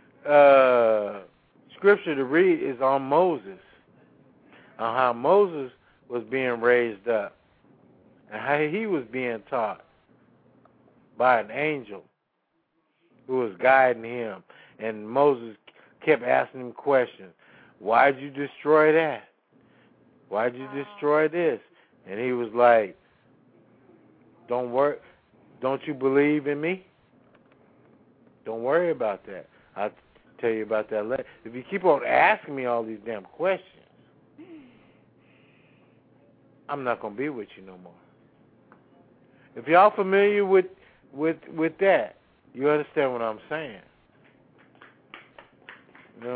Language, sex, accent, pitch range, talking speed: English, male, American, 125-175 Hz, 125 wpm